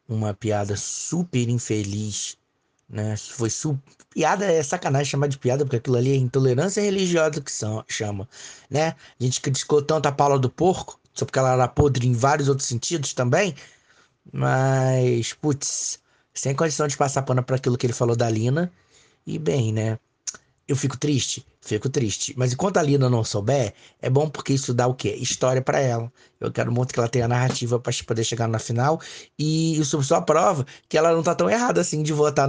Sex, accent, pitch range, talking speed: male, Brazilian, 125-155 Hz, 190 wpm